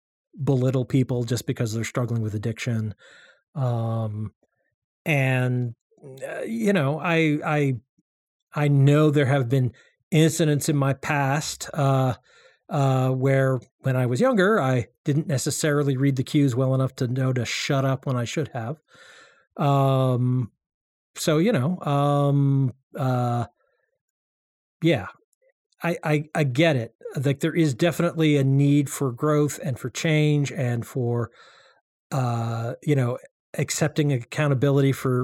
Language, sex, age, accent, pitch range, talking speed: English, male, 40-59, American, 125-155 Hz, 135 wpm